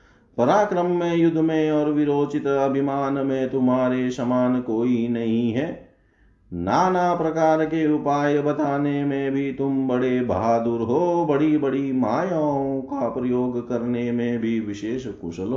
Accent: native